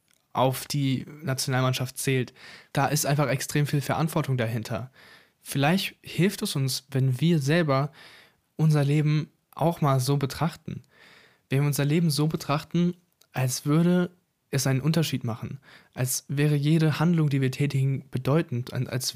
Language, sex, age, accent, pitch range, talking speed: German, male, 20-39, German, 130-160 Hz, 140 wpm